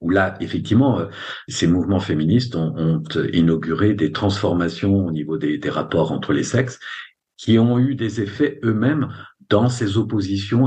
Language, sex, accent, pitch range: French, male, French, 95-135 Hz